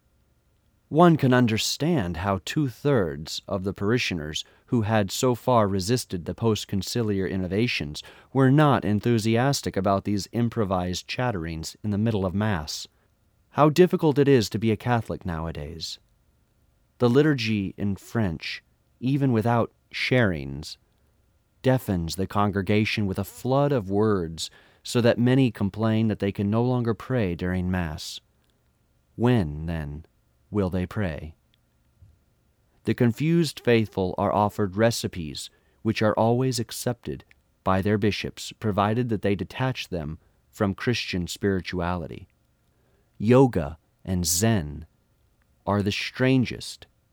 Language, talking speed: English, 120 wpm